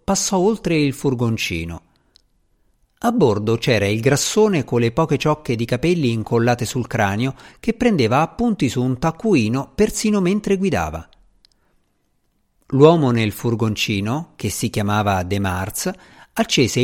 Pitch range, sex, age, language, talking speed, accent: 110-165 Hz, male, 50-69, Italian, 130 wpm, native